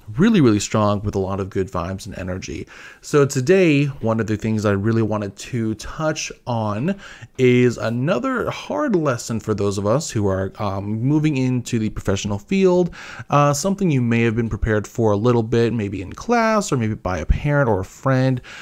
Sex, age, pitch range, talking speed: male, 30-49, 105-130 Hz, 195 wpm